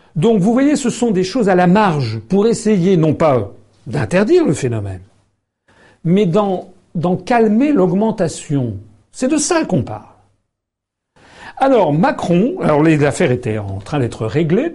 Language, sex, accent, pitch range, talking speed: French, male, French, 125-180 Hz, 150 wpm